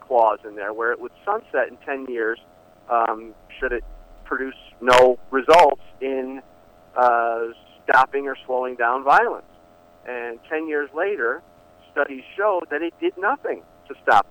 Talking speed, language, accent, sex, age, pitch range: 145 wpm, English, American, male, 50-69, 120-195 Hz